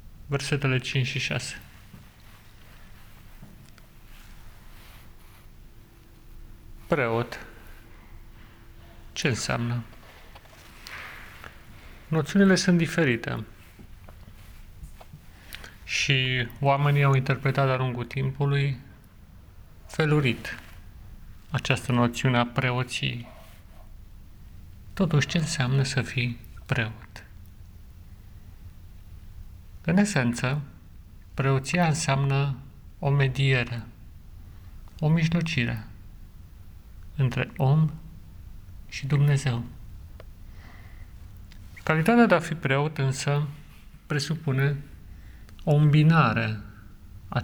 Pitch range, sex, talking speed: 95-135 Hz, male, 65 wpm